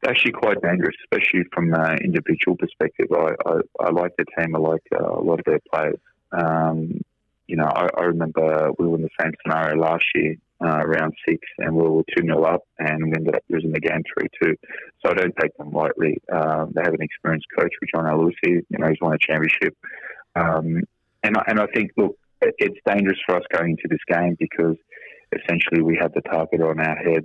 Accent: Australian